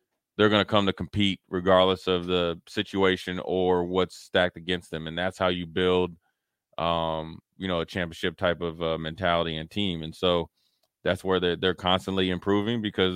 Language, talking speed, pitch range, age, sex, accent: English, 185 wpm, 90-100 Hz, 20-39, male, American